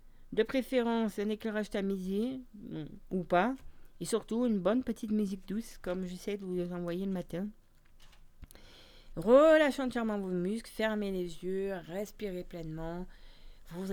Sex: female